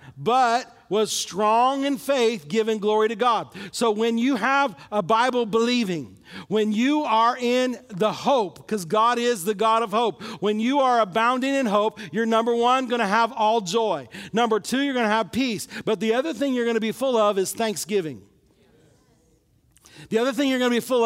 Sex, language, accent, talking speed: male, English, American, 200 wpm